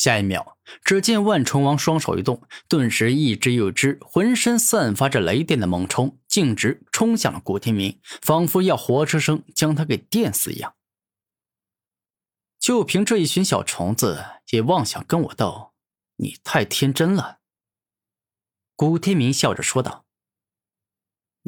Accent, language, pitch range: native, Chinese, 105-160 Hz